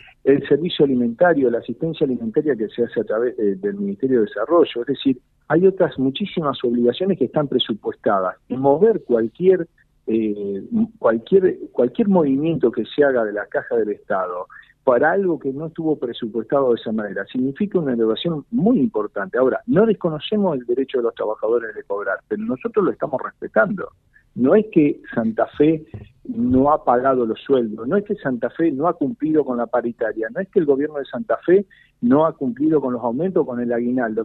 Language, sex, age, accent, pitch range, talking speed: Spanish, male, 50-69, Argentinian, 125-195 Hz, 185 wpm